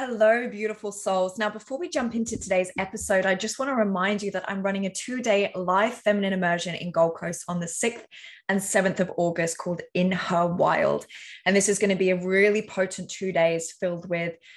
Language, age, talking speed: English, 20-39, 210 wpm